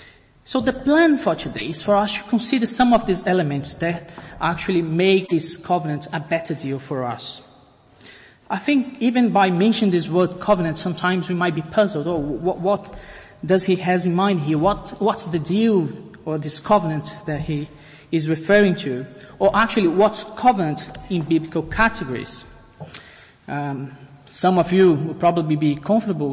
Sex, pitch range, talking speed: male, 150-195 Hz, 170 wpm